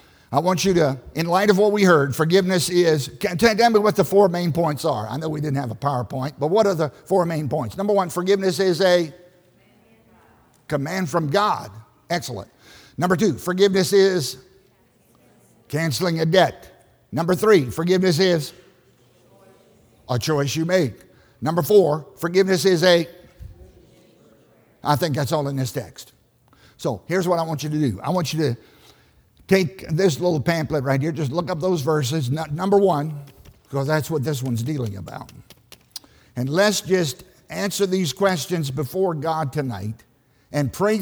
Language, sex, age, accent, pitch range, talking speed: English, male, 50-69, American, 130-185 Hz, 165 wpm